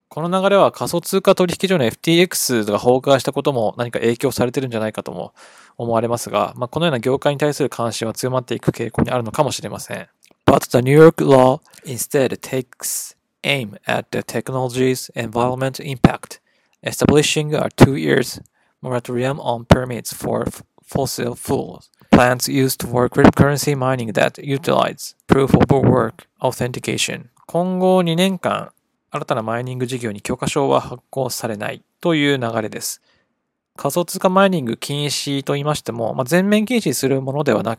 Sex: male